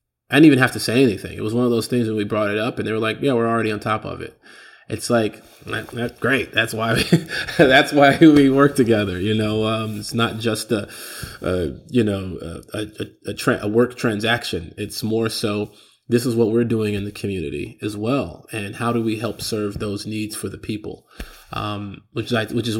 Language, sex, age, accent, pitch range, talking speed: English, male, 20-39, American, 105-120 Hz, 230 wpm